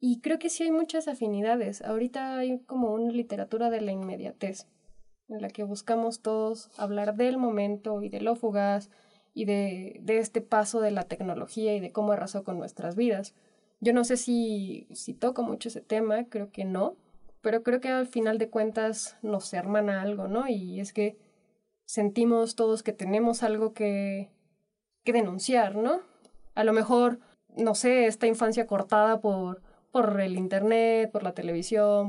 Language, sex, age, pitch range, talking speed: Spanish, female, 20-39, 205-230 Hz, 170 wpm